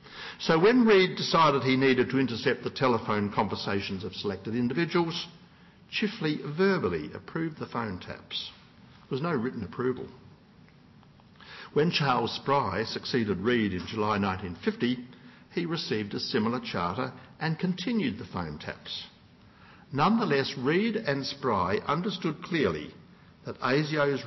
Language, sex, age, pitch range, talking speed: English, male, 60-79, 110-165 Hz, 125 wpm